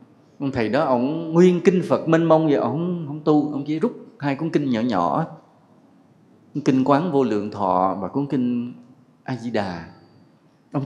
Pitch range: 120-165 Hz